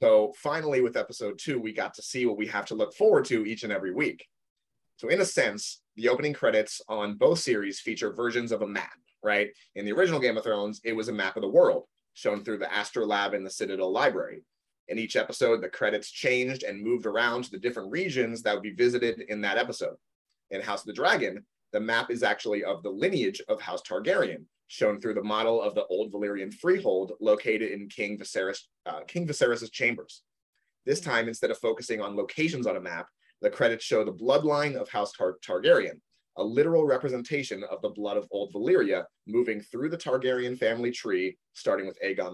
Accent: American